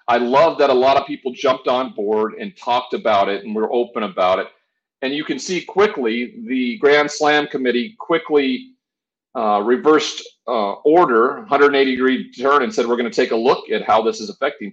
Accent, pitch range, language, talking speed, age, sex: American, 110-155 Hz, English, 200 wpm, 40-59, male